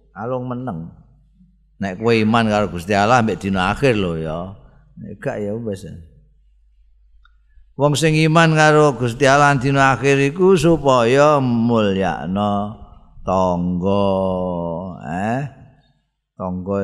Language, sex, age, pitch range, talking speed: Indonesian, male, 50-69, 100-115 Hz, 115 wpm